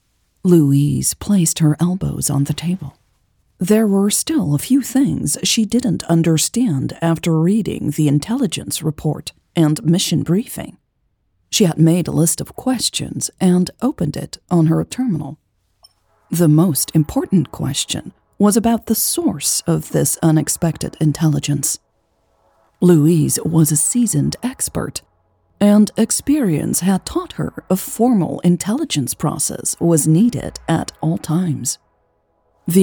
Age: 40-59